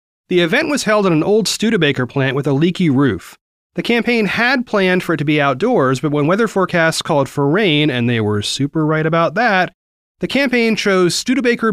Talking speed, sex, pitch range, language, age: 205 wpm, male, 145-200 Hz, English, 30-49